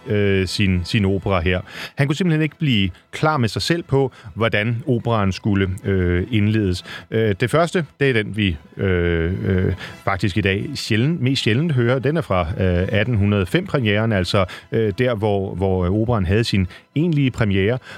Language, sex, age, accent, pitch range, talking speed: Danish, male, 30-49, native, 95-125 Hz, 170 wpm